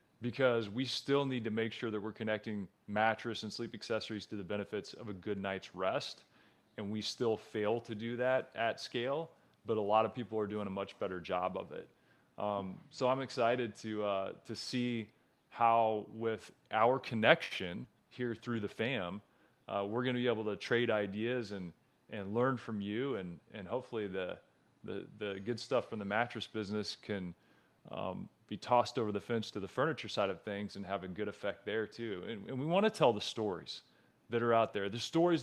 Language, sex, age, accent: English, male, 30-49, American